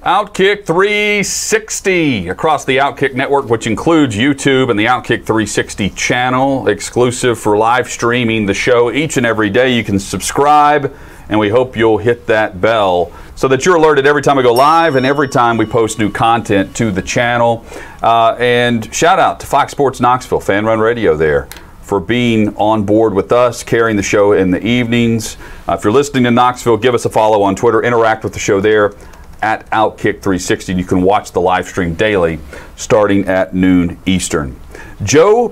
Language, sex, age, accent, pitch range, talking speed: English, male, 40-59, American, 105-140 Hz, 180 wpm